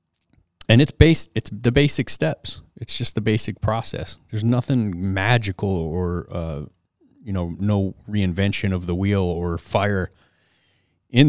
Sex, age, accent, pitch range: male, 30-49, American, 85-105 Hz